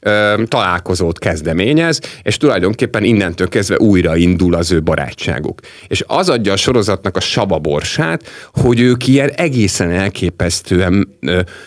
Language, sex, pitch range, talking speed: Hungarian, male, 90-130 Hz, 120 wpm